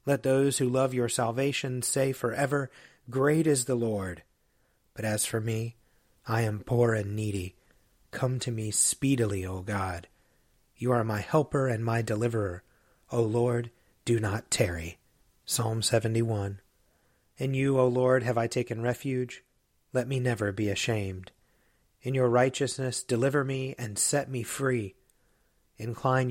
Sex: male